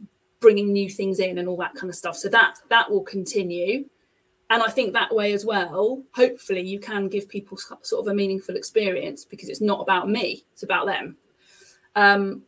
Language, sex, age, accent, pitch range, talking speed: English, female, 30-49, British, 190-225 Hz, 195 wpm